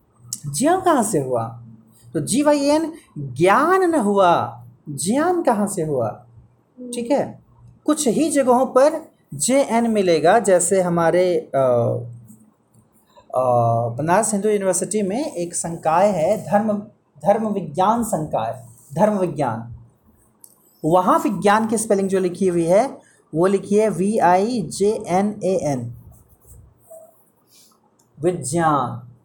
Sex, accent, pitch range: male, native, 135-210 Hz